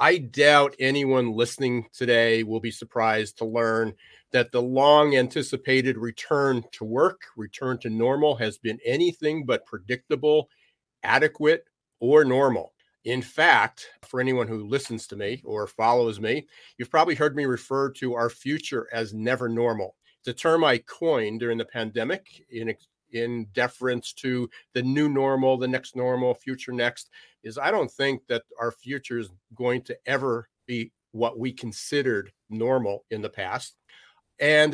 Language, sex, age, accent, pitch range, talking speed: English, male, 40-59, American, 115-140 Hz, 155 wpm